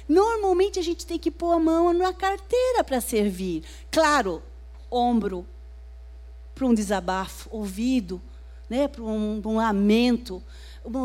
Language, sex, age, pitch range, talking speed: Portuguese, female, 40-59, 205-285 Hz, 130 wpm